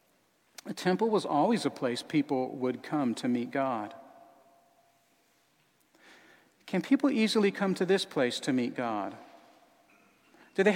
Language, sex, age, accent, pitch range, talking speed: English, male, 40-59, American, 155-230 Hz, 135 wpm